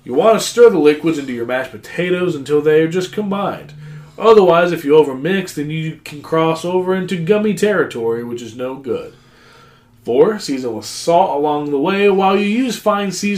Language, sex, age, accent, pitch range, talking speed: English, male, 20-39, American, 135-185 Hz, 195 wpm